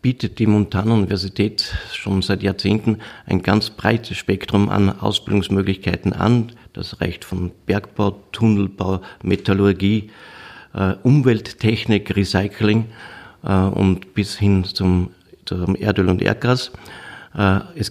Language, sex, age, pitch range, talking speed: German, male, 50-69, 95-110 Hz, 100 wpm